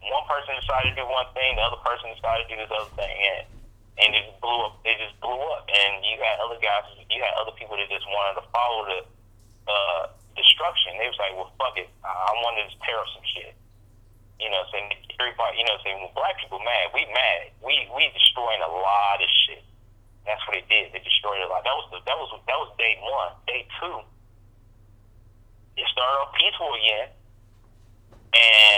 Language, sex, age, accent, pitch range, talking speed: English, male, 30-49, American, 100-115 Hz, 215 wpm